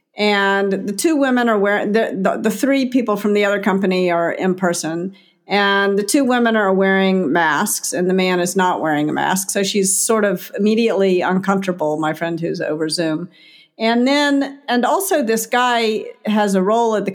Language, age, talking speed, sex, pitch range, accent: English, 50-69, 195 wpm, female, 185-230 Hz, American